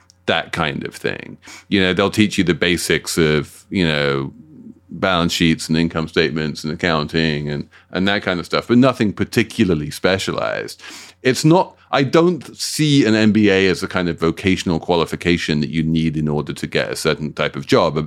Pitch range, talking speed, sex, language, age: 80-105 Hz, 185 wpm, male, English, 40-59